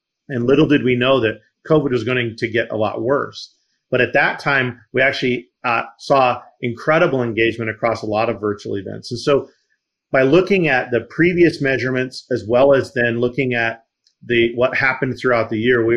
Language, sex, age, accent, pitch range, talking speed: English, male, 40-59, American, 120-145 Hz, 190 wpm